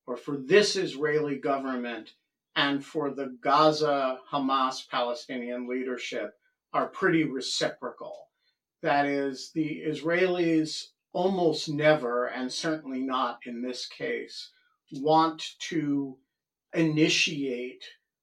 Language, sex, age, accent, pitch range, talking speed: English, male, 50-69, American, 135-165 Hz, 100 wpm